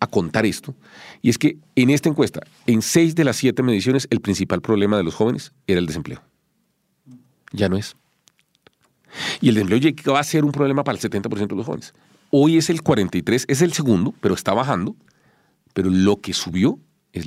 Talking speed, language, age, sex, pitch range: 195 wpm, English, 40-59, male, 85-125 Hz